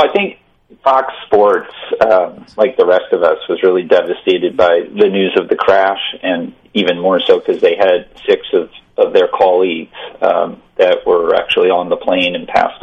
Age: 40-59